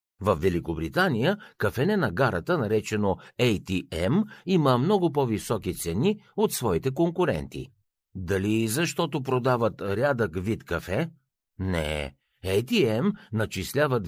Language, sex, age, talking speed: Bulgarian, male, 60-79, 100 wpm